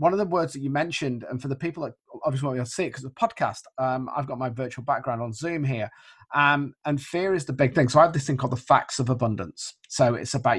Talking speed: 285 wpm